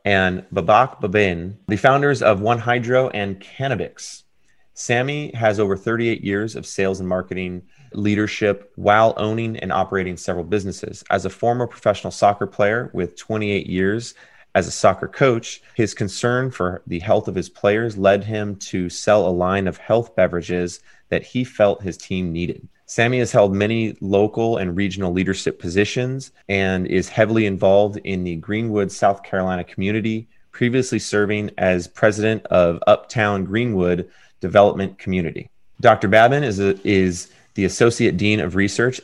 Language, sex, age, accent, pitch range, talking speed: English, male, 30-49, American, 95-115 Hz, 150 wpm